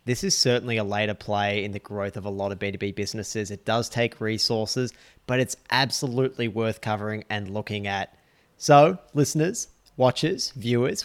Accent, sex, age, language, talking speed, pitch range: Australian, male, 30-49, English, 170 wpm, 110-140 Hz